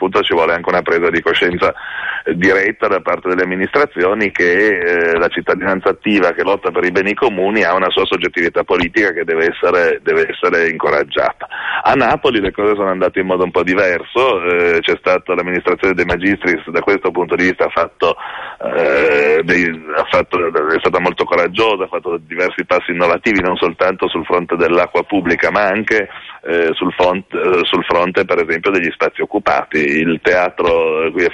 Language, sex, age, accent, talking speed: Italian, male, 30-49, native, 180 wpm